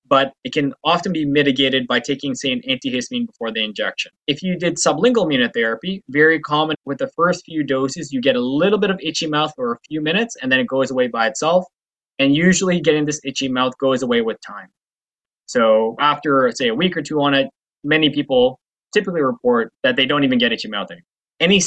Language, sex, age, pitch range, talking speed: English, male, 20-39, 135-205 Hz, 215 wpm